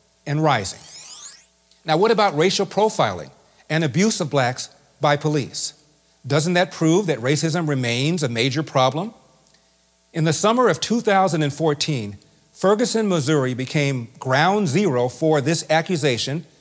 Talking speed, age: 125 wpm, 40-59